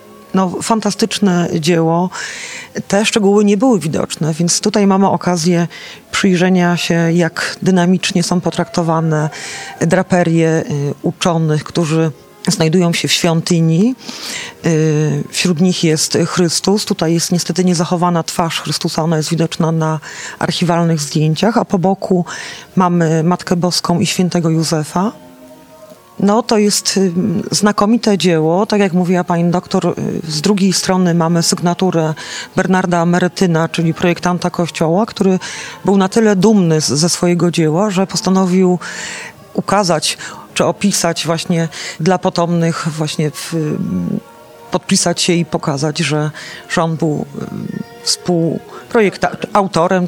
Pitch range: 165-190 Hz